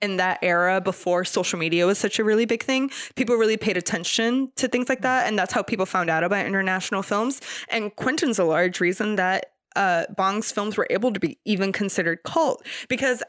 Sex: female